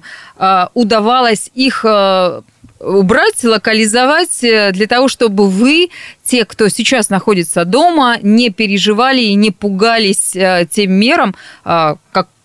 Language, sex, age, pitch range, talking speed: Russian, female, 20-39, 190-250 Hz, 100 wpm